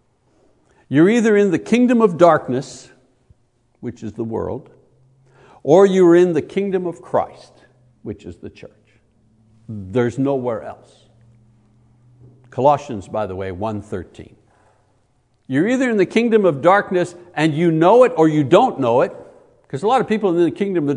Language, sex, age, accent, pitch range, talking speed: English, male, 60-79, American, 125-185 Hz, 155 wpm